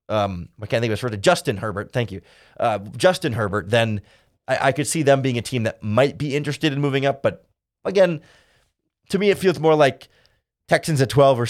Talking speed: 225 wpm